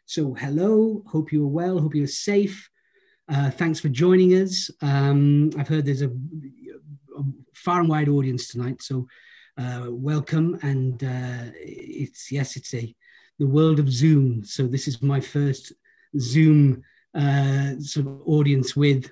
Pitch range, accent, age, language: 135-160 Hz, British, 40-59, English